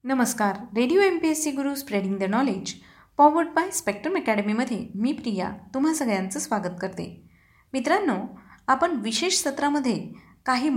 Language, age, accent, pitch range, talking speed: Marathi, 20-39, native, 200-280 Hz, 140 wpm